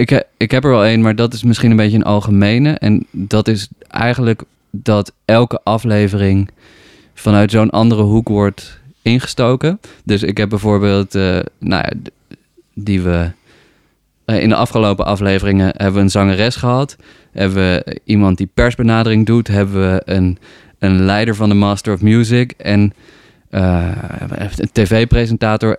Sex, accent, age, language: male, Dutch, 20-39, Dutch